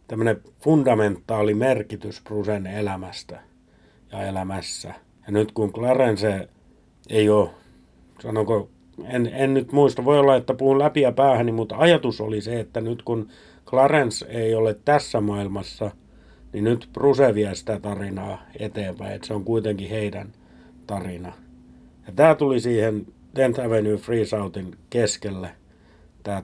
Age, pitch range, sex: 50-69, 95-115 Hz, male